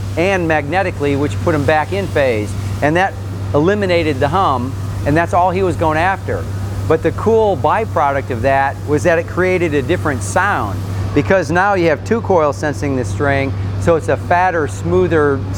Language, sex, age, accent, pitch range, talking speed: English, male, 40-59, American, 100-150 Hz, 180 wpm